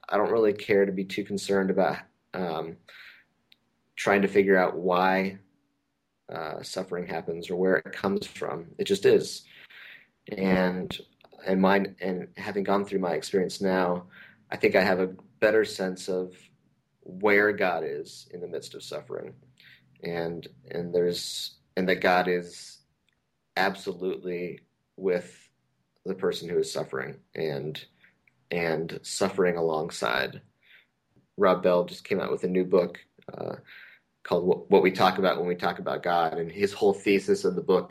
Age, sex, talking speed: 30-49, male, 155 wpm